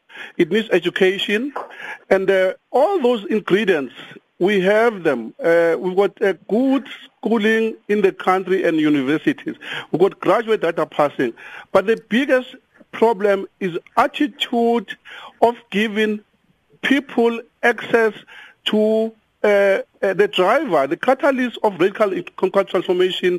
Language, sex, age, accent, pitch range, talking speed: English, male, 50-69, South African, 180-230 Hz, 120 wpm